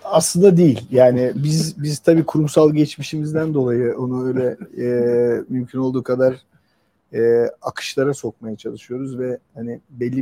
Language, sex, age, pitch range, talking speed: English, male, 50-69, 125-155 Hz, 130 wpm